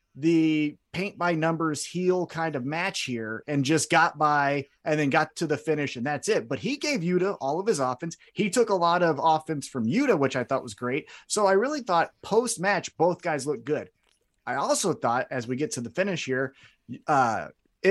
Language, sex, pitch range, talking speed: English, male, 135-180 Hz, 215 wpm